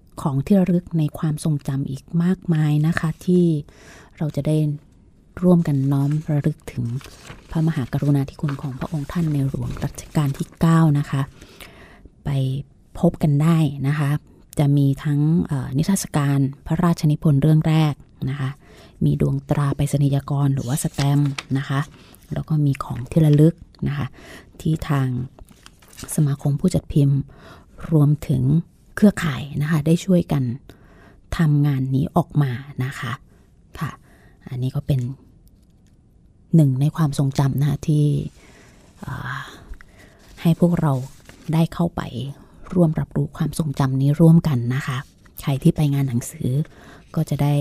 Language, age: Thai, 20-39